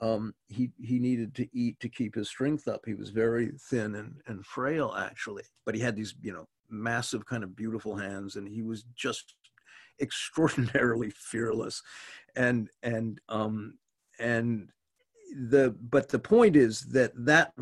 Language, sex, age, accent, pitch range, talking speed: English, male, 50-69, American, 110-140 Hz, 160 wpm